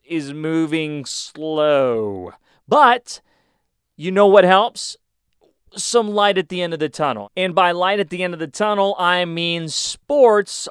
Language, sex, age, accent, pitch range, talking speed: English, male, 30-49, American, 140-190 Hz, 155 wpm